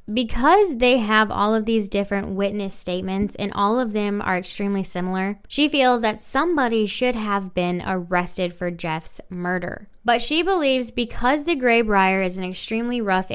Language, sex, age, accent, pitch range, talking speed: English, female, 10-29, American, 185-230 Hz, 165 wpm